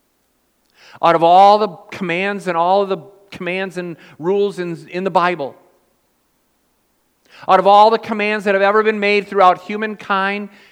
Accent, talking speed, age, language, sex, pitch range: American, 155 wpm, 50-69, English, male, 145-195 Hz